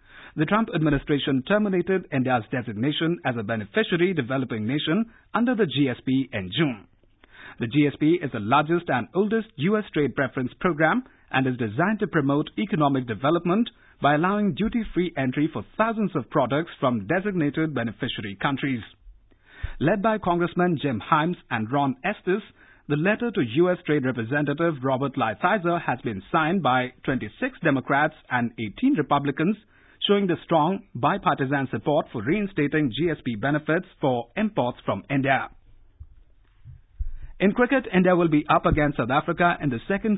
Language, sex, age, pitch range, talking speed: English, male, 50-69, 125-175 Hz, 145 wpm